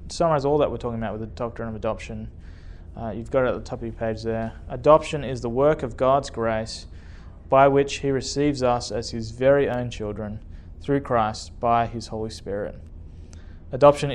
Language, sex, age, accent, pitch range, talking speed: English, male, 20-39, Australian, 105-135 Hz, 195 wpm